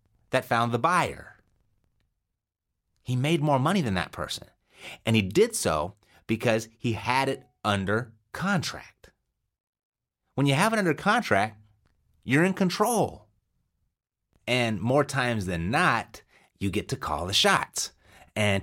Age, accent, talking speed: 30-49, American, 135 wpm